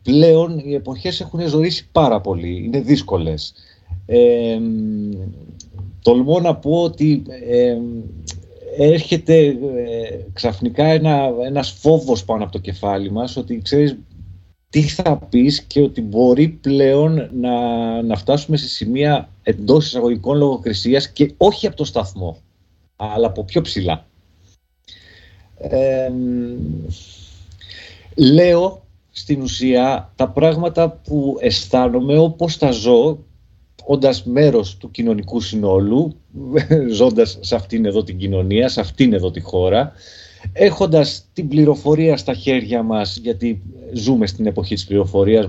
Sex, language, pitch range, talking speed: male, Greek, 100-155 Hz, 115 wpm